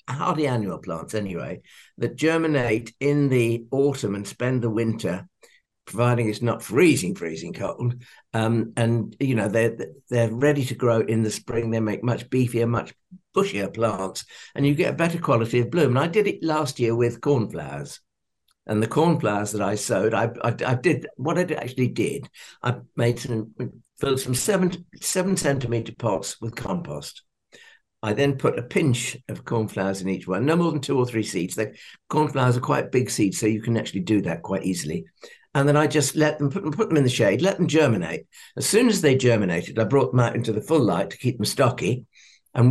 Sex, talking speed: male, 200 wpm